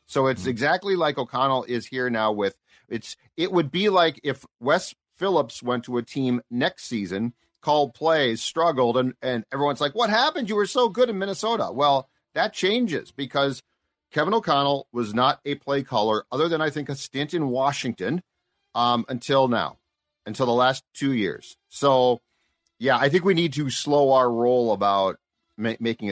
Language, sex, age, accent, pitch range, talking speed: English, male, 40-59, American, 120-150 Hz, 175 wpm